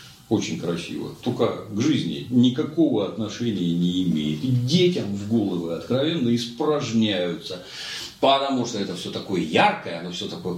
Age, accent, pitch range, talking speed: 40-59, native, 100-165 Hz, 135 wpm